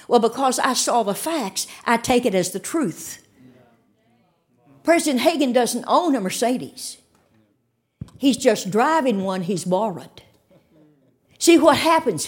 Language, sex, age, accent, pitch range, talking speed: English, female, 60-79, American, 245-335 Hz, 130 wpm